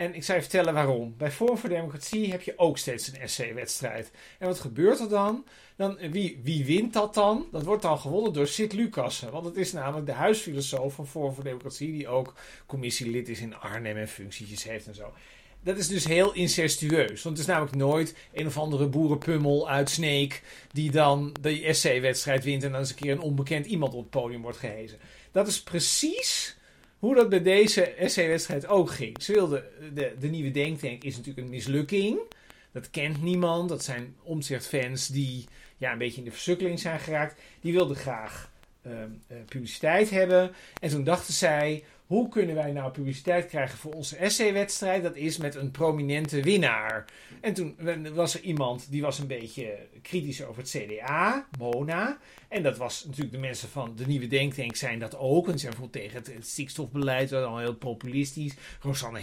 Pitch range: 135-180 Hz